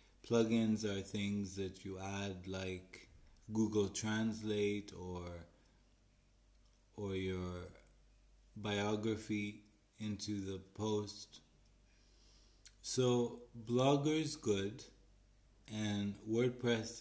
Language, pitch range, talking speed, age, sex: English, 95-110 Hz, 80 wpm, 20-39, male